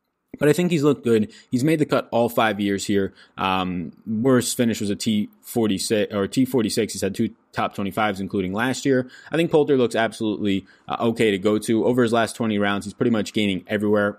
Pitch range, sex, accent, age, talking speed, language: 100-135 Hz, male, American, 20-39, 220 wpm, English